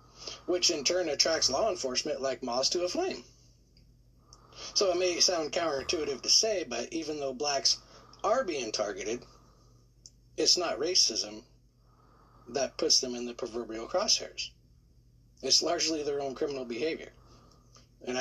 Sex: male